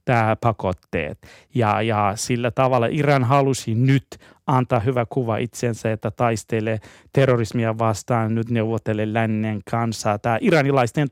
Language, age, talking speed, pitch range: Finnish, 30-49, 125 wpm, 110-140 Hz